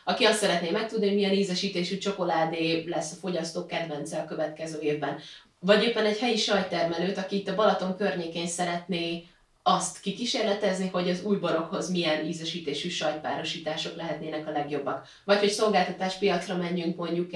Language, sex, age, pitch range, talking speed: Hungarian, female, 30-49, 160-190 Hz, 150 wpm